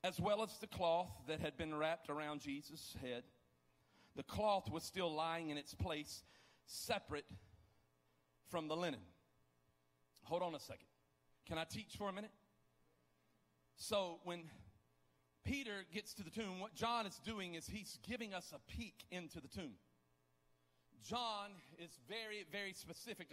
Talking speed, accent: 150 wpm, American